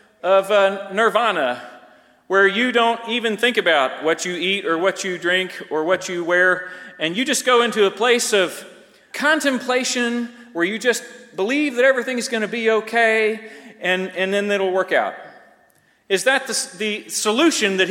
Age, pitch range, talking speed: 40-59, 185-245 Hz, 175 wpm